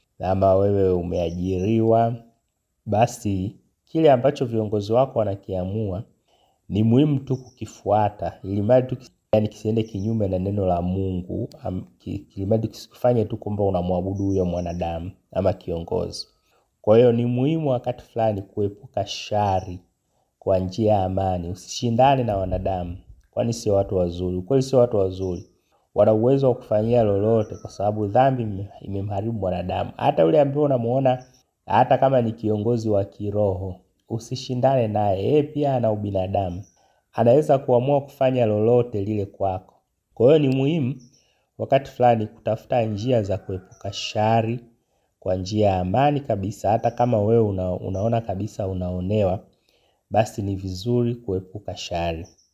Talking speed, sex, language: 130 wpm, male, Swahili